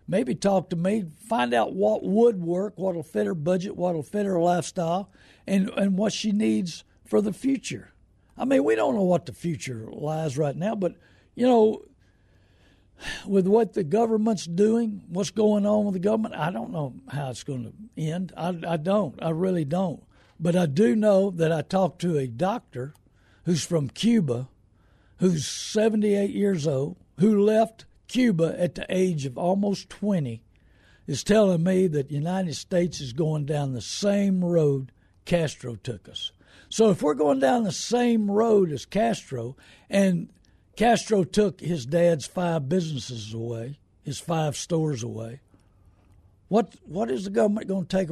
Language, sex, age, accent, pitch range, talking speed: English, male, 60-79, American, 130-200 Hz, 170 wpm